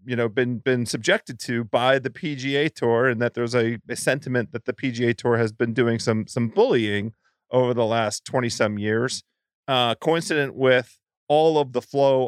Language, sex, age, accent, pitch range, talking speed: English, male, 40-59, American, 110-135 Hz, 185 wpm